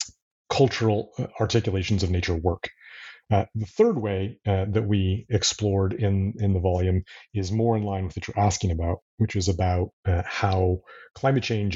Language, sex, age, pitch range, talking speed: English, male, 30-49, 95-115 Hz, 170 wpm